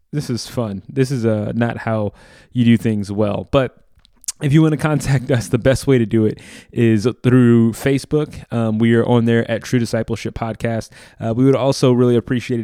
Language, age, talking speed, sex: English, 20-39, 205 wpm, male